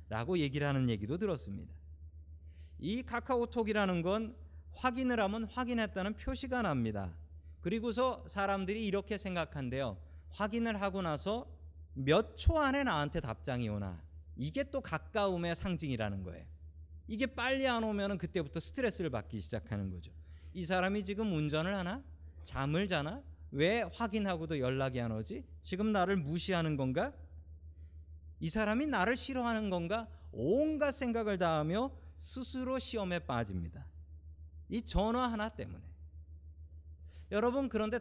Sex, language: male, Korean